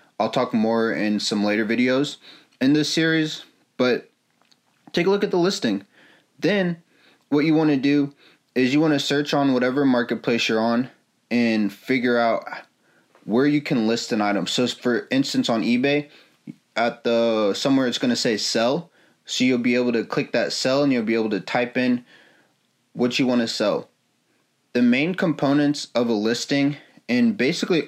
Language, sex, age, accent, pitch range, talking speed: English, male, 20-39, American, 115-150 Hz, 175 wpm